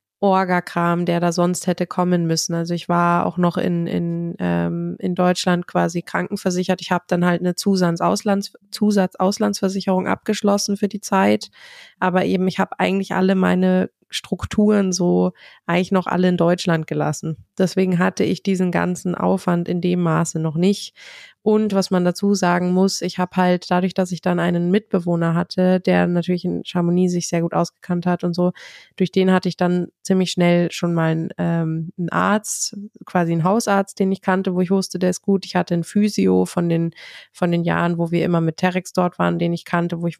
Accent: German